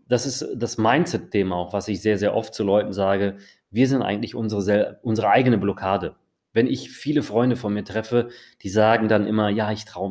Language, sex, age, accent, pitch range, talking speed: German, male, 30-49, German, 100-125 Hz, 200 wpm